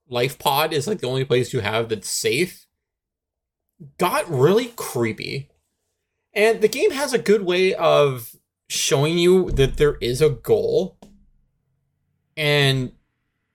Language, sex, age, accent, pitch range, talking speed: English, male, 30-49, American, 120-165 Hz, 135 wpm